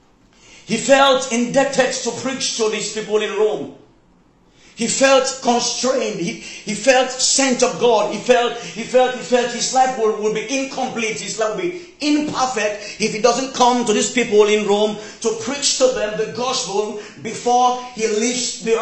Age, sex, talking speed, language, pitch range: 40-59, male, 175 wpm, English, 215-255 Hz